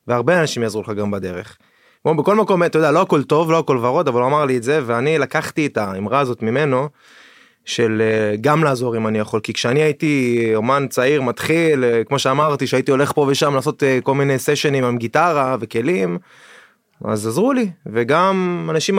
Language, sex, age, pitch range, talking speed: Hebrew, male, 20-39, 125-160 Hz, 185 wpm